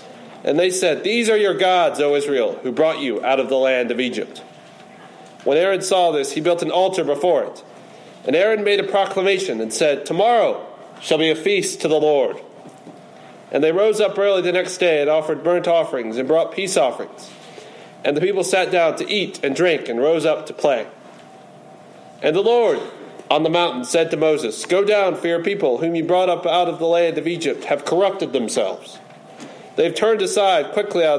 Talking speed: 205 wpm